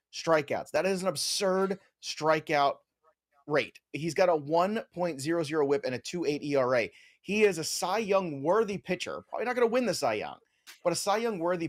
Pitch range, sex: 140-180 Hz, male